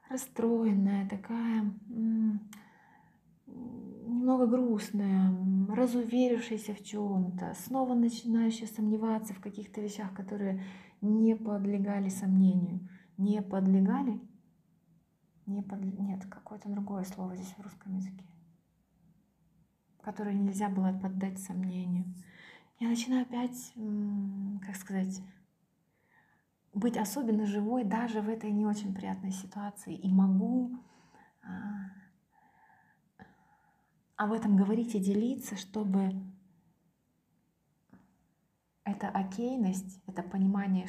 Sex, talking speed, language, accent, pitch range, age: female, 90 wpm, Ukrainian, native, 190-215 Hz, 30-49